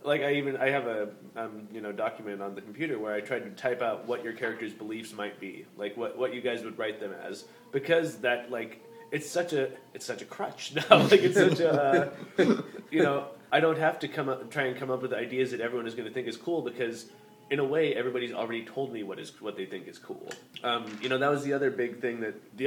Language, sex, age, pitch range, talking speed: English, male, 20-39, 105-130 Hz, 260 wpm